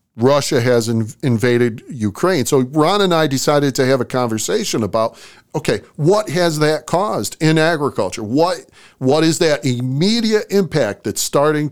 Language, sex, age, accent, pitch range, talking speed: English, male, 50-69, American, 120-160 Hz, 150 wpm